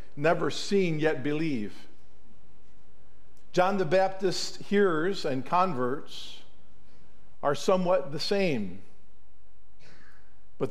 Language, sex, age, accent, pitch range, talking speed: English, male, 50-69, American, 130-170 Hz, 85 wpm